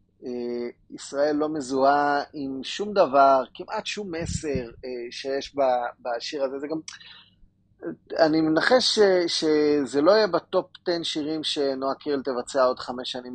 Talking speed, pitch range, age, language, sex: 135 wpm, 125-165 Hz, 30-49, Hebrew, male